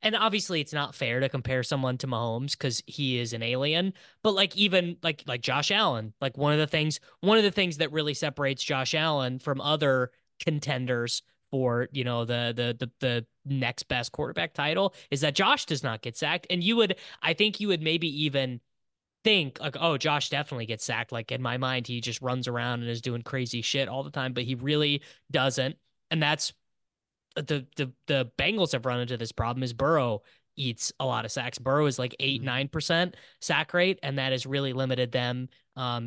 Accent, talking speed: American, 210 wpm